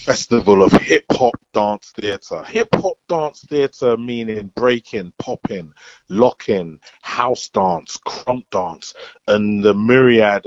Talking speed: 110 wpm